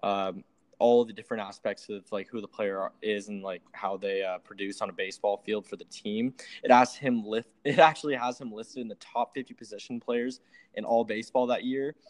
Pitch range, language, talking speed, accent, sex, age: 110-145 Hz, English, 225 wpm, American, male, 20-39